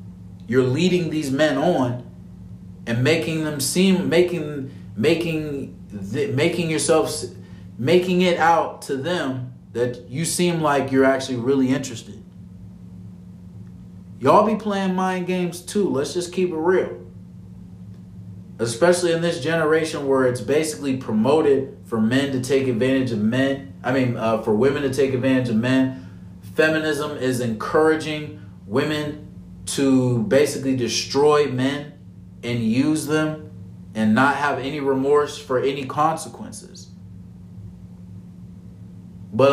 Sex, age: male, 30-49